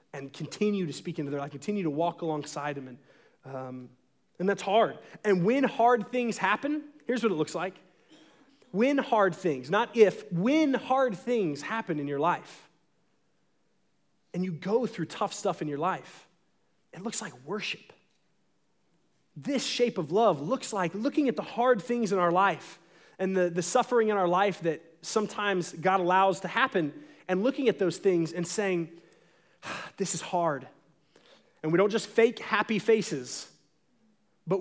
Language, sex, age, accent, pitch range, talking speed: English, male, 30-49, American, 170-235 Hz, 170 wpm